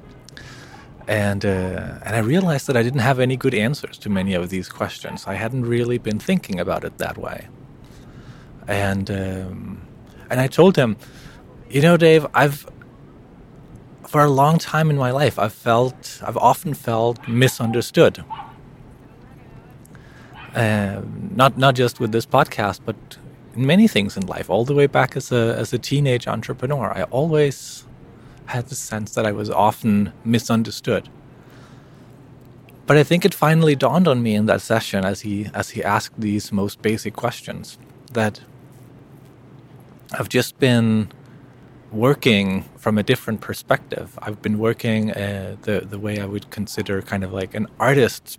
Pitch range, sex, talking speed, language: 105-135 Hz, male, 160 wpm, English